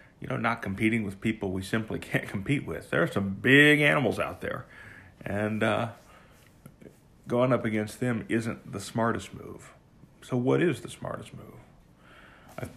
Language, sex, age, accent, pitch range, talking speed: English, male, 40-59, American, 105-130 Hz, 165 wpm